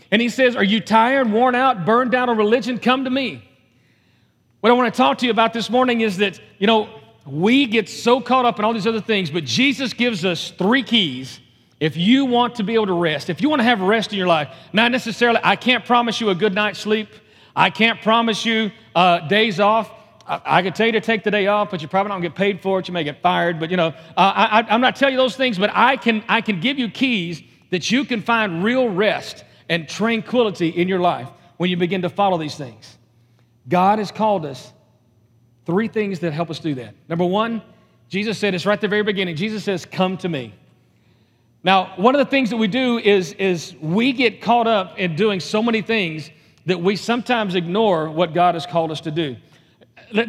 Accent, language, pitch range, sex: American, English, 170-230 Hz, male